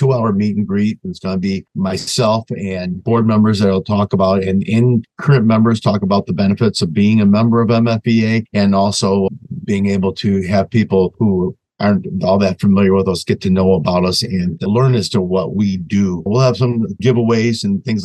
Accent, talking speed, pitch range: American, 205 wpm, 95-110 Hz